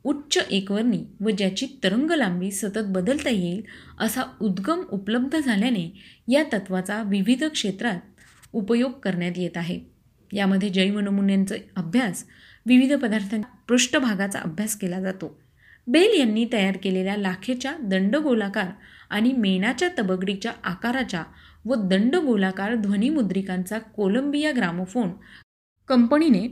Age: 30-49